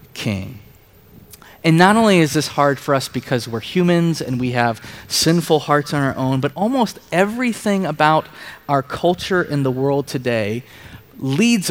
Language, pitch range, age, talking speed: English, 125-170 Hz, 20-39, 160 wpm